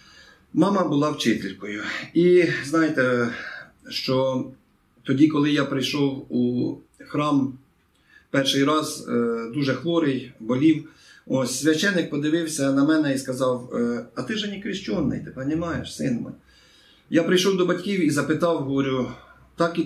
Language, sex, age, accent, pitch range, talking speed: Russian, male, 50-69, native, 125-165 Hz, 125 wpm